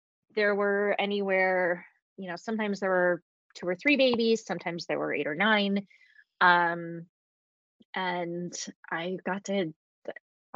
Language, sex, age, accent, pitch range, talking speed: English, female, 20-39, American, 160-195 Hz, 130 wpm